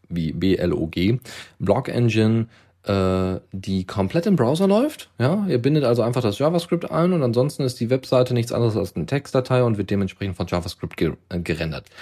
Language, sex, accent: German, male, German